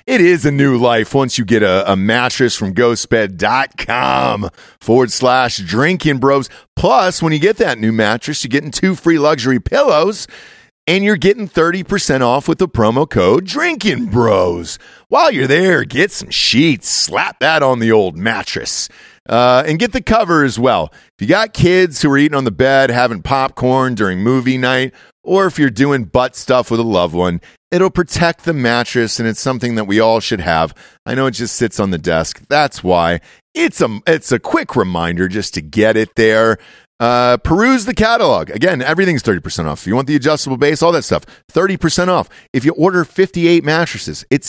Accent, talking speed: American, 195 wpm